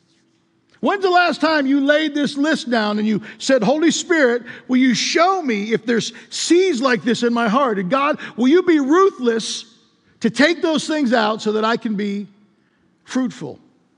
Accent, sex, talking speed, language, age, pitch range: American, male, 185 wpm, English, 50-69, 205-280 Hz